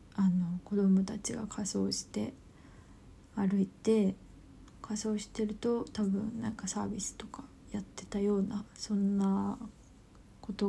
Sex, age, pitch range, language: female, 20-39, 195-220 Hz, Japanese